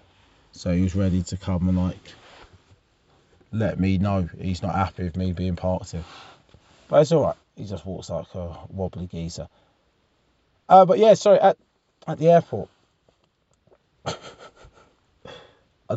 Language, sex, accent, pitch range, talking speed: English, male, British, 85-120 Hz, 150 wpm